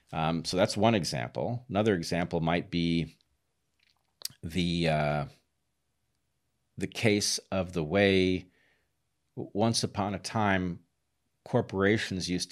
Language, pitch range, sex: English, 80-100 Hz, male